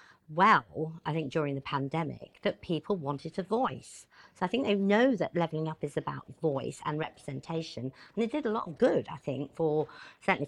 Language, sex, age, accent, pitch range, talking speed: English, female, 50-69, British, 150-190 Hz, 200 wpm